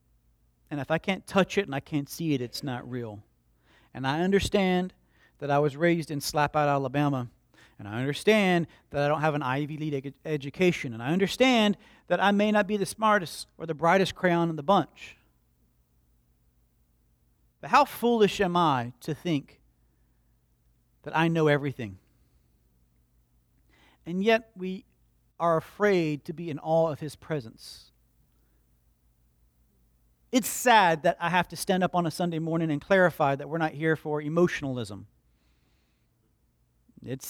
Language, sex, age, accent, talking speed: English, male, 40-59, American, 155 wpm